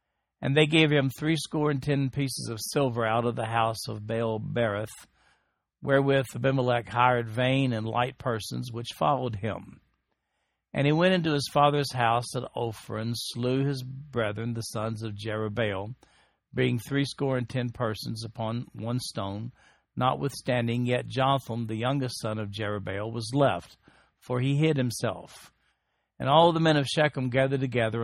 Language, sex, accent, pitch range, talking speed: English, male, American, 110-135 Hz, 155 wpm